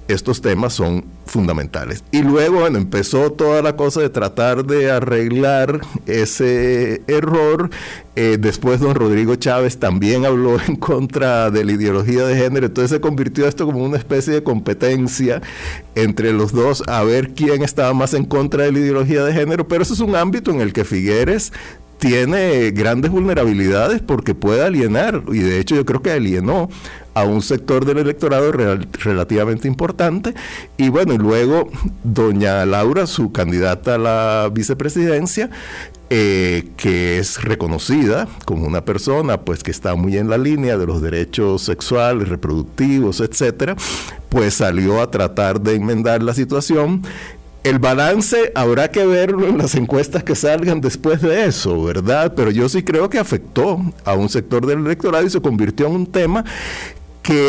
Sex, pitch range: male, 105-150 Hz